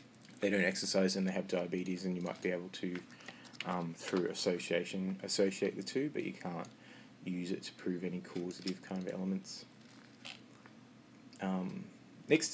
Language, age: English, 20-39